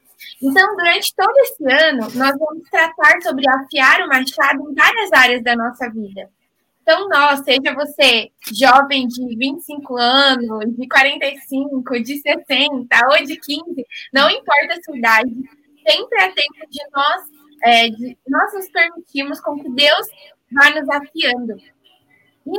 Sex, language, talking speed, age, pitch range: female, Portuguese, 145 wpm, 20-39, 260-315 Hz